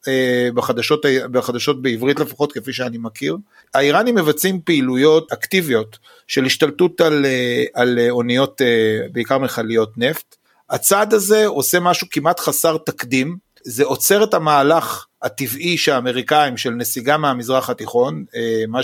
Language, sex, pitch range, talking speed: Hebrew, male, 125-170 Hz, 120 wpm